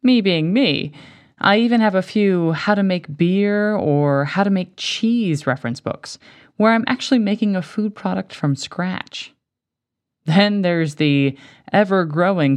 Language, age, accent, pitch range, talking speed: English, 20-39, American, 150-235 Hz, 125 wpm